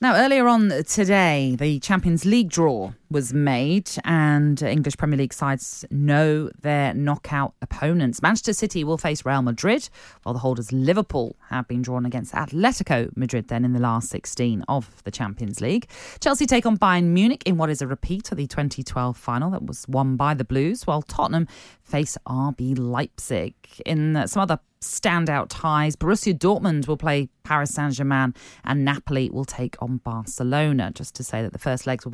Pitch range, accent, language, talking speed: 130-170 Hz, British, English, 175 wpm